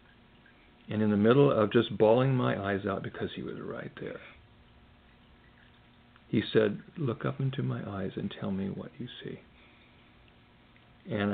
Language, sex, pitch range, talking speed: English, male, 105-125 Hz, 155 wpm